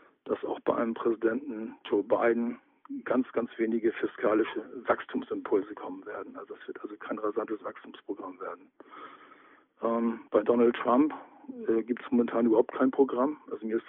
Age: 50-69